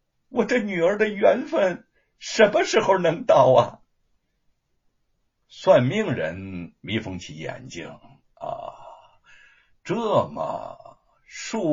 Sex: male